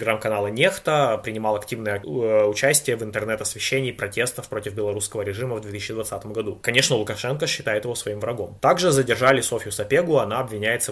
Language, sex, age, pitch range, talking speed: Russian, male, 20-39, 105-135 Hz, 145 wpm